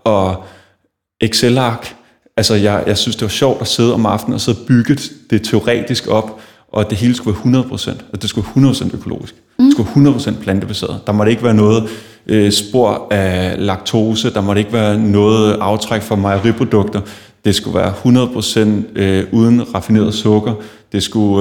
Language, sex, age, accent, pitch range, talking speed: Danish, male, 30-49, native, 105-120 Hz, 175 wpm